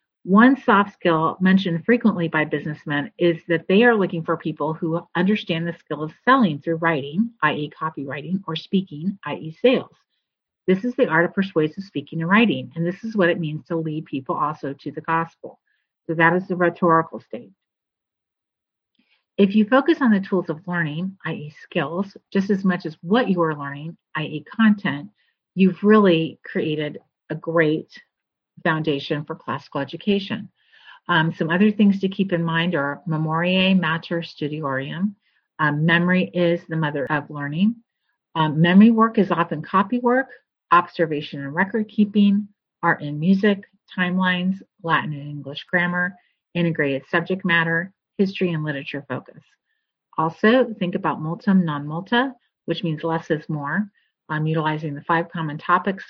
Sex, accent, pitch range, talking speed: female, American, 155-195 Hz, 155 wpm